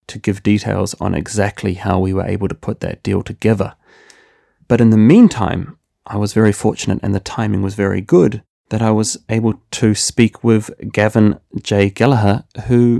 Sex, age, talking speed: male, 30-49, 180 wpm